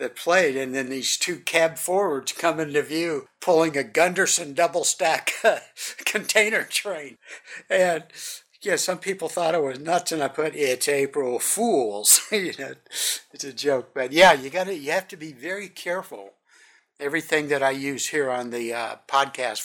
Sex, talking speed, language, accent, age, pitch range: male, 170 wpm, English, American, 60-79, 125-170 Hz